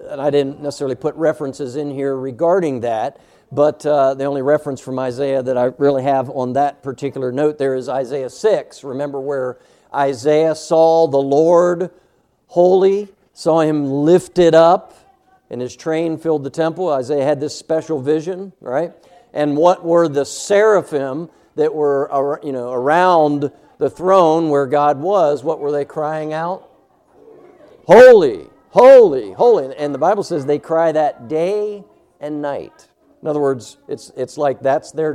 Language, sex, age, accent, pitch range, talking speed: English, male, 60-79, American, 140-180 Hz, 160 wpm